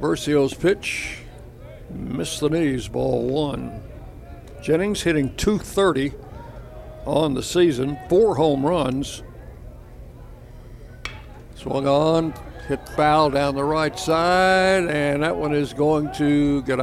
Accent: American